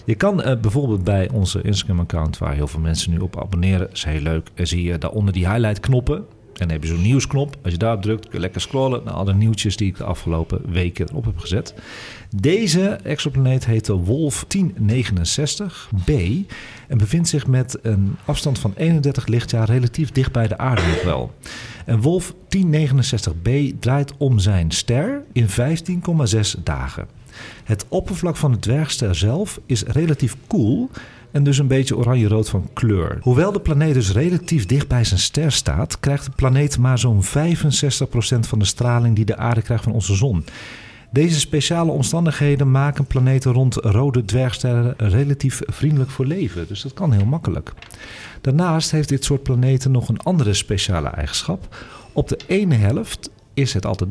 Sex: male